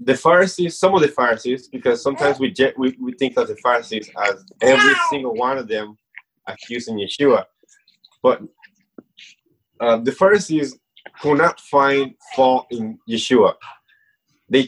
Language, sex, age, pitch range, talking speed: English, male, 20-39, 125-190 Hz, 135 wpm